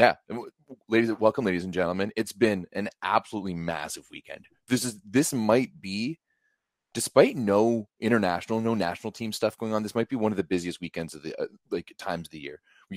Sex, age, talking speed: male, 30-49, 200 wpm